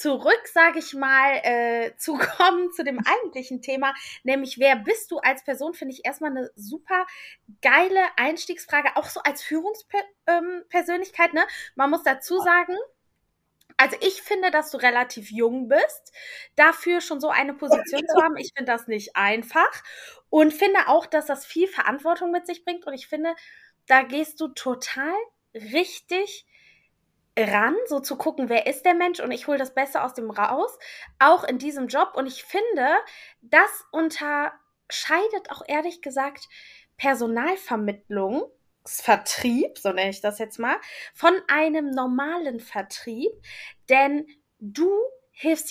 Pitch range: 260-350 Hz